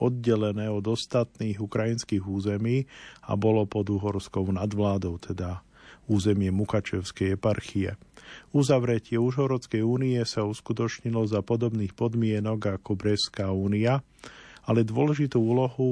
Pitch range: 105-120 Hz